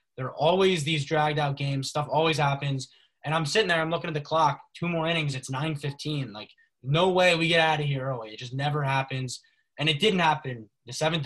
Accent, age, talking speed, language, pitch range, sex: American, 20-39, 230 wpm, English, 135-160 Hz, male